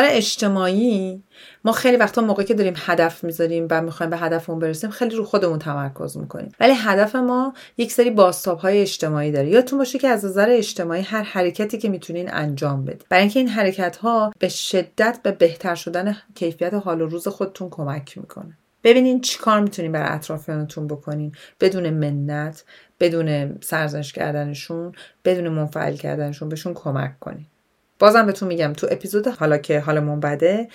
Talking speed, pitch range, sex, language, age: 165 wpm, 155-195 Hz, female, Persian, 30-49